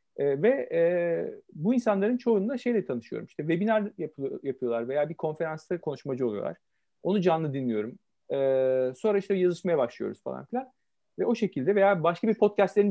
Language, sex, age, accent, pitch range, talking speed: Turkish, male, 40-59, native, 135-210 Hz, 160 wpm